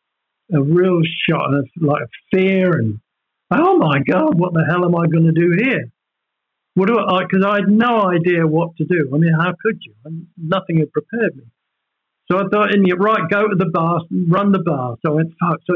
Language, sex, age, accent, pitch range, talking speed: English, male, 50-69, British, 160-220 Hz, 225 wpm